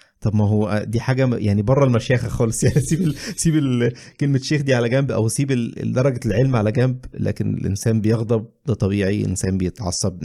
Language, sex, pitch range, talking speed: Arabic, male, 100-130 Hz, 175 wpm